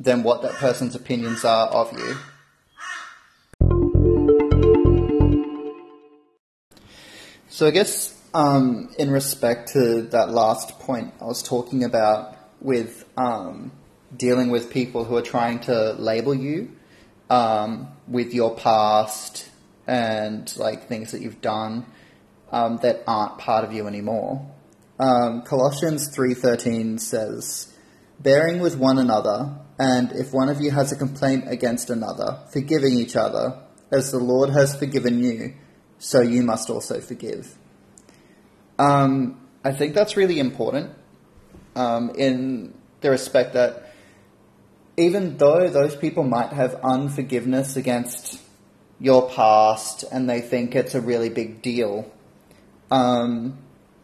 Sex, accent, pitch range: male, Australian, 115-135 Hz